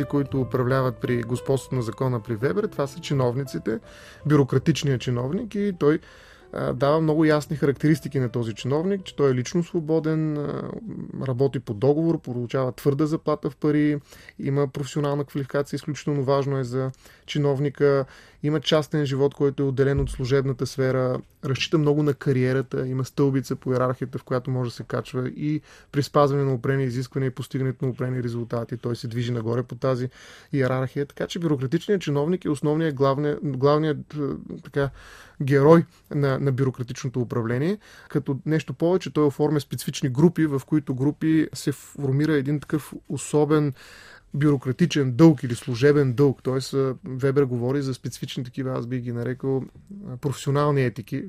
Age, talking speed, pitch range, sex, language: 30-49, 150 wpm, 130-150 Hz, male, Bulgarian